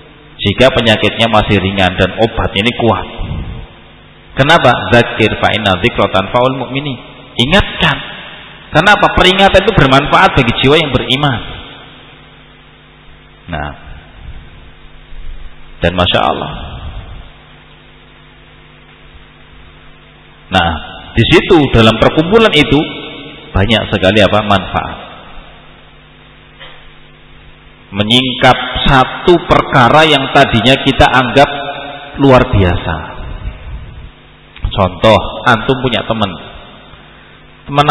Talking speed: 75 wpm